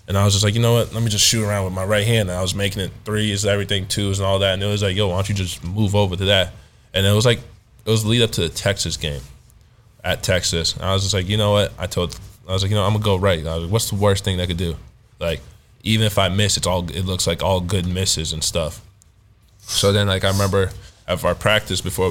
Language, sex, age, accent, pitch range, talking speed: English, male, 20-39, American, 90-105 Hz, 305 wpm